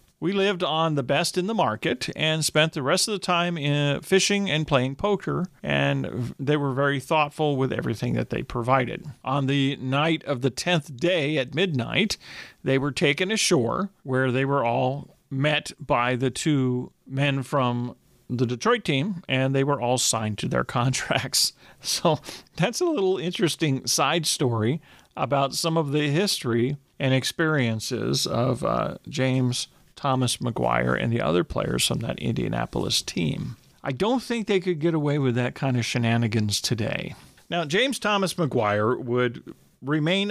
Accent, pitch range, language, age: American, 125-165 Hz, English, 40-59